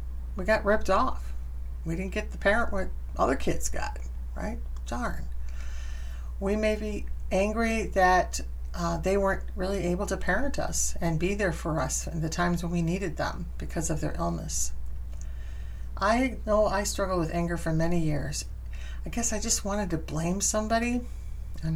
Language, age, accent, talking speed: English, 50-69, American, 170 wpm